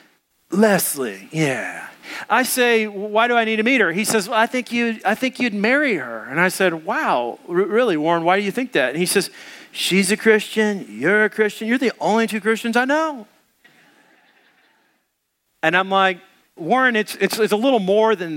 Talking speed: 195 wpm